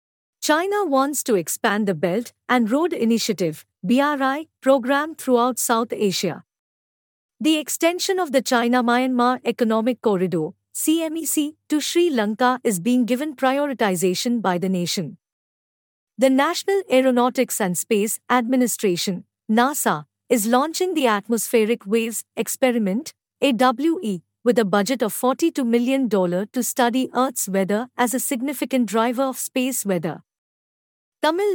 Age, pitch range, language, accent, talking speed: 50-69, 220-275 Hz, English, Indian, 125 wpm